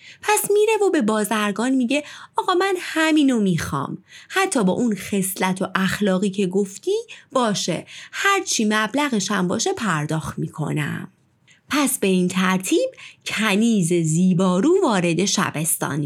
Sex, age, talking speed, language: female, 30-49, 120 wpm, Persian